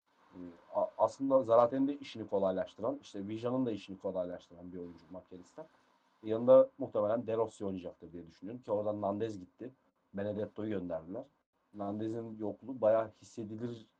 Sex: male